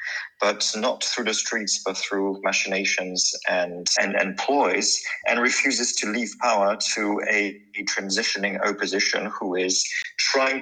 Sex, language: male, English